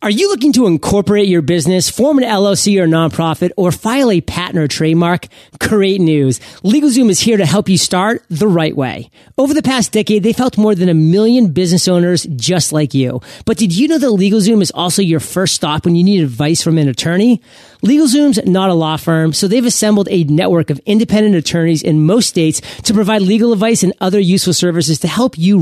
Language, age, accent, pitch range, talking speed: English, 30-49, American, 165-215 Hz, 210 wpm